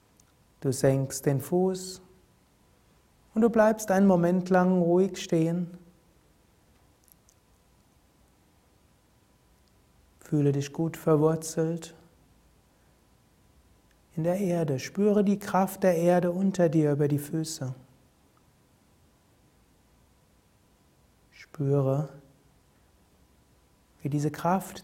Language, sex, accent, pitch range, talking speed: German, male, German, 145-175 Hz, 80 wpm